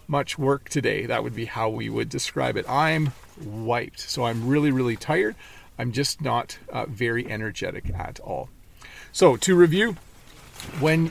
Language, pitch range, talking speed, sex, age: English, 95-150 Hz, 160 wpm, male, 40-59